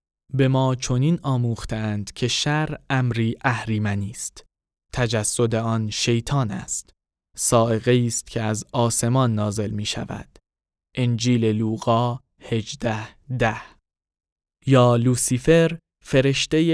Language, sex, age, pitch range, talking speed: Persian, male, 20-39, 110-135 Hz, 95 wpm